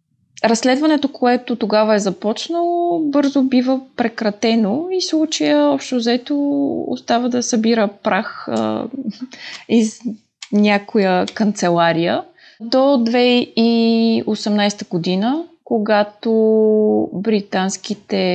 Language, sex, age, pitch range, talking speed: Bulgarian, female, 20-39, 185-245 Hz, 80 wpm